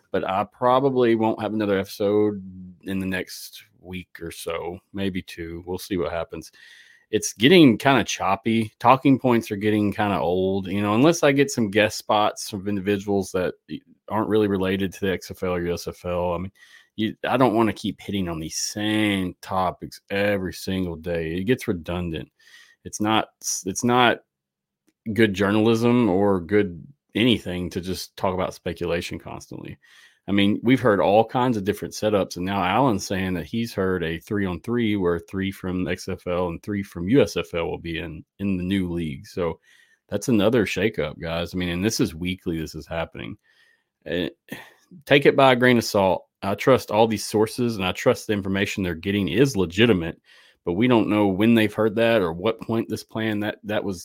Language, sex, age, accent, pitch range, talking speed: English, male, 30-49, American, 90-115 Hz, 190 wpm